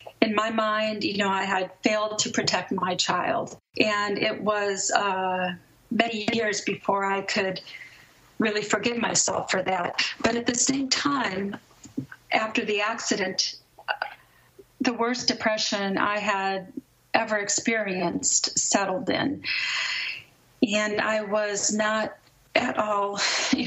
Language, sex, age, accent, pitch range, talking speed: English, female, 40-59, American, 205-245 Hz, 125 wpm